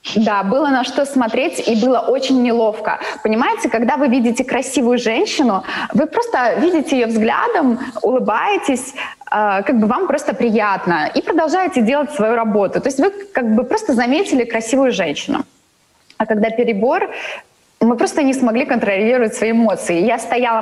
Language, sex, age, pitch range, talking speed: Russian, female, 20-39, 215-260 Hz, 150 wpm